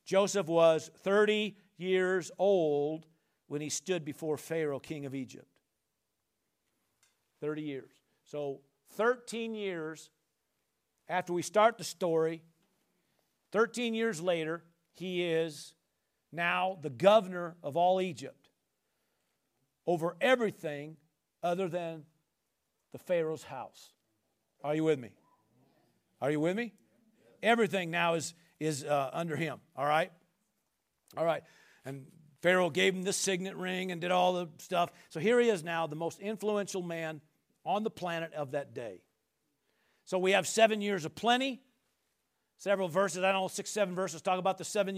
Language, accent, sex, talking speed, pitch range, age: English, American, male, 140 wpm, 160-205 Hz, 50-69